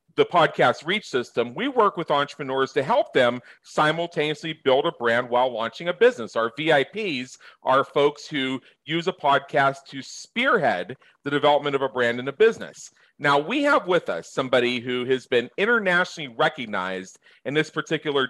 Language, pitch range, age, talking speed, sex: English, 140-195 Hz, 40-59, 165 wpm, male